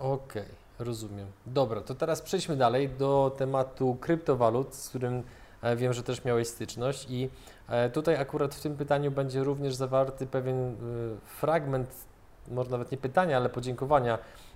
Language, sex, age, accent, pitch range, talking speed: Polish, male, 20-39, native, 120-135 Hz, 145 wpm